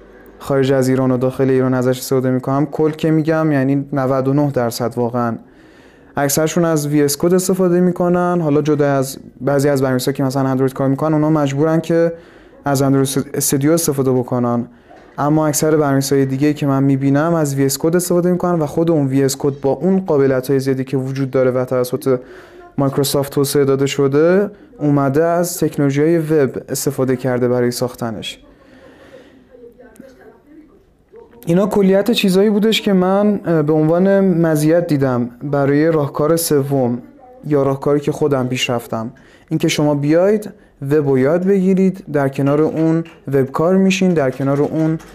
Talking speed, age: 155 wpm, 20-39